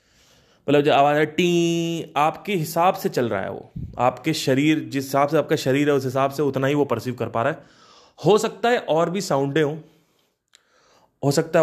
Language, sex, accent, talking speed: Hindi, male, native, 205 wpm